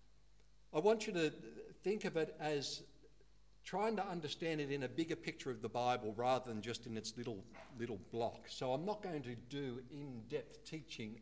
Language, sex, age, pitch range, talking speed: English, male, 60-79, 115-165 Hz, 195 wpm